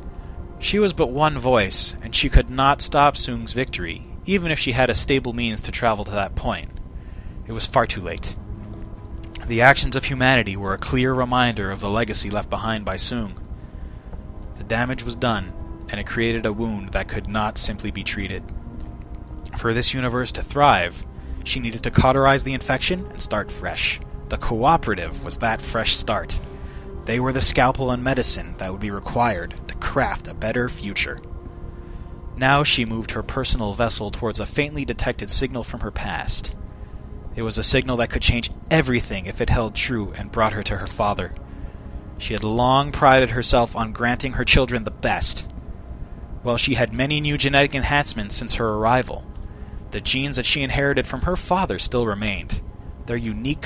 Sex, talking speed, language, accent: male, 180 wpm, English, American